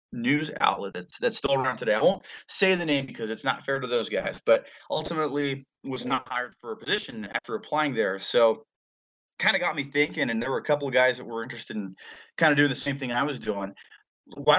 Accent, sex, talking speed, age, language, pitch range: American, male, 235 wpm, 20-39, English, 110-145 Hz